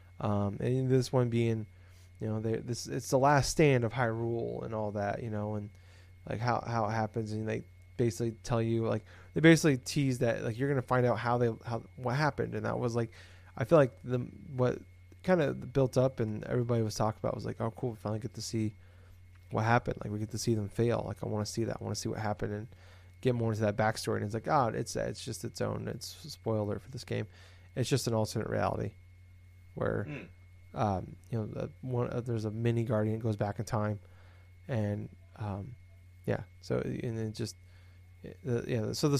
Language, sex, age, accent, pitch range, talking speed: English, male, 20-39, American, 95-120 Hz, 225 wpm